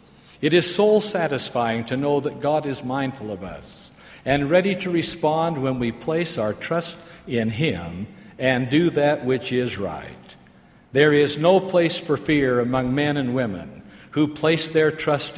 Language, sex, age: English, male, 60-79